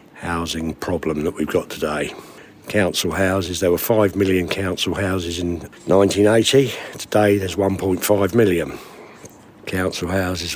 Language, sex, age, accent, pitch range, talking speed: English, male, 60-79, British, 90-100 Hz, 125 wpm